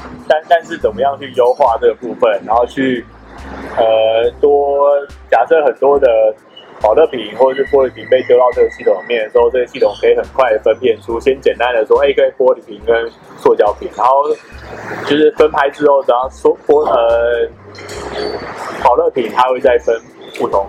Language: Chinese